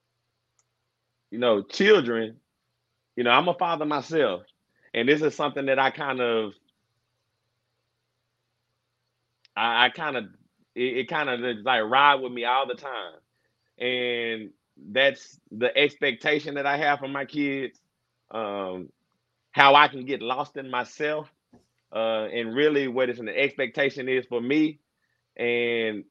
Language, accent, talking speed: English, American, 140 wpm